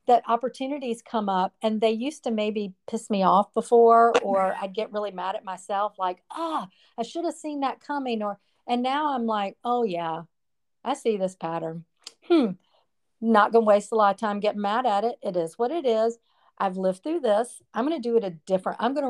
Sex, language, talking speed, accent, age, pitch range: female, English, 225 wpm, American, 40-59, 185-230 Hz